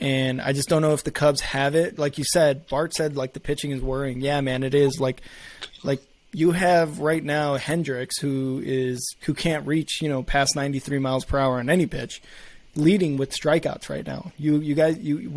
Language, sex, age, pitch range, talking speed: English, male, 20-39, 130-150 Hz, 215 wpm